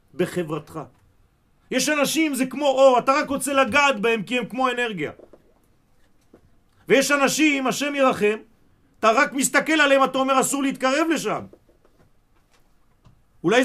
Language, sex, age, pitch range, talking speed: French, male, 40-59, 160-260 Hz, 125 wpm